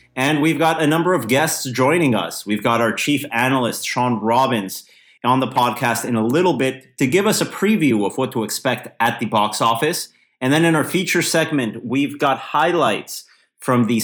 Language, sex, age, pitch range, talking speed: English, male, 30-49, 120-150 Hz, 200 wpm